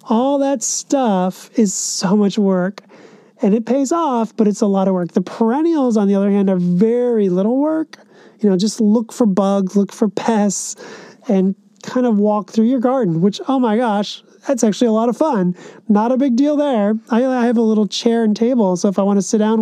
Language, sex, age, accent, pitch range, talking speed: English, male, 30-49, American, 210-250 Hz, 225 wpm